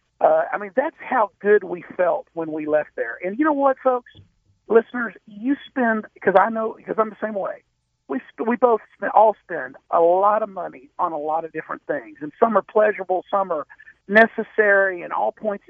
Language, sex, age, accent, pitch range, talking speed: English, male, 50-69, American, 185-250 Hz, 210 wpm